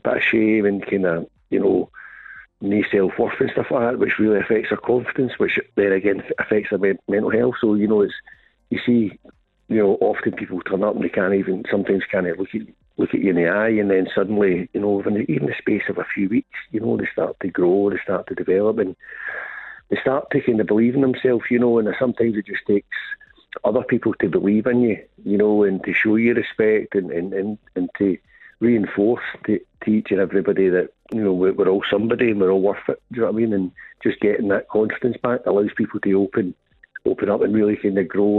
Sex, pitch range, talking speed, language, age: male, 95-115 Hz, 240 wpm, English, 50-69